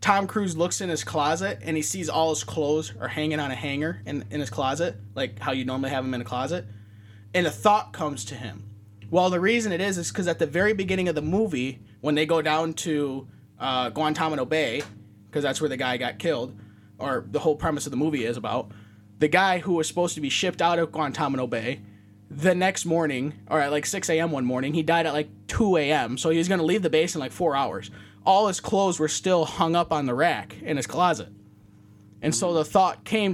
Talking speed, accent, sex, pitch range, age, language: 240 wpm, American, male, 125-185 Hz, 20-39, English